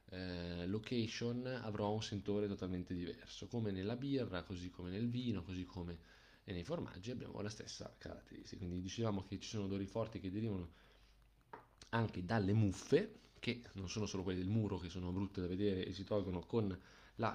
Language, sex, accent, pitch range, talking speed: Italian, male, native, 90-110 Hz, 175 wpm